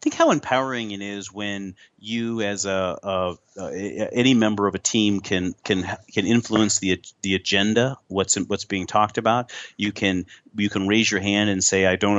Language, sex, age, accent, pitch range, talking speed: English, male, 40-59, American, 100-115 Hz, 195 wpm